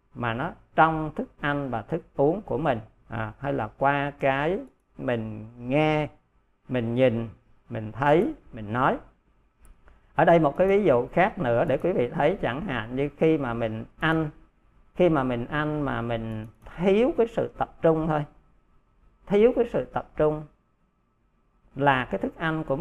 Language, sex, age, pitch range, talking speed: Vietnamese, male, 50-69, 120-160 Hz, 165 wpm